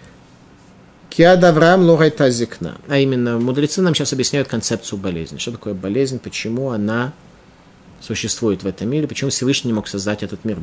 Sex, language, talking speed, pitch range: male, Russian, 135 wpm, 105-155 Hz